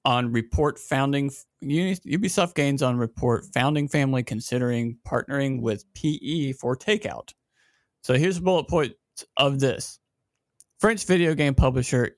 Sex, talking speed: male, 130 wpm